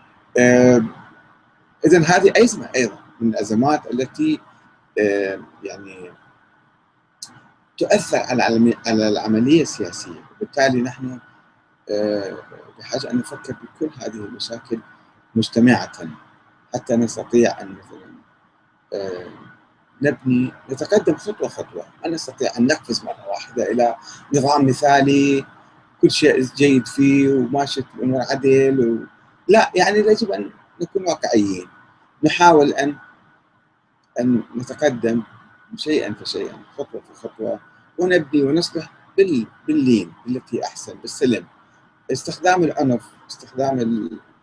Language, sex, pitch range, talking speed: Arabic, male, 115-145 Hz, 95 wpm